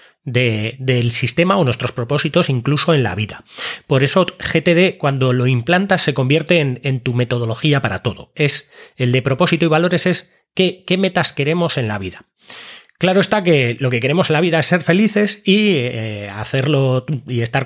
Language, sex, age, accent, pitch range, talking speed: Spanish, male, 30-49, Spanish, 125-180 Hz, 185 wpm